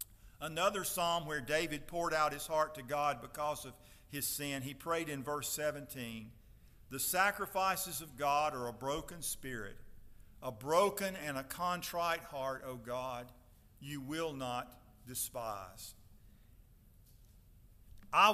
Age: 50-69